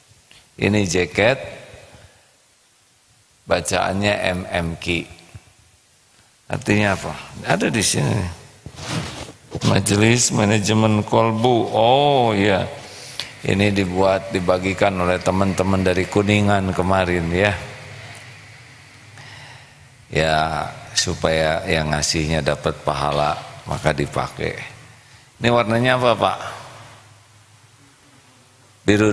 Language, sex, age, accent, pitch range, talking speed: Indonesian, male, 40-59, native, 85-115 Hz, 80 wpm